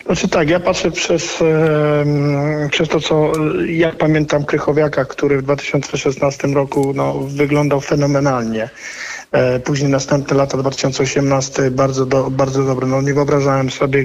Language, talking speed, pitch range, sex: Polish, 130 wpm, 135-145 Hz, male